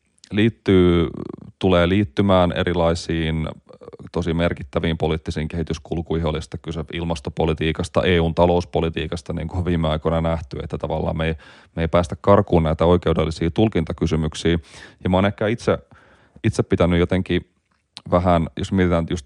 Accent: native